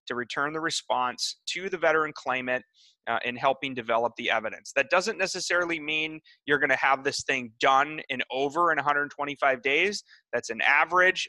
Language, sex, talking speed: English, male, 175 wpm